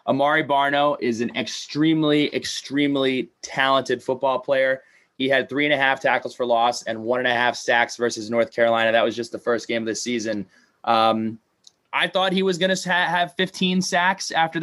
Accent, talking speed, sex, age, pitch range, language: American, 195 wpm, male, 20-39, 110-140 Hz, English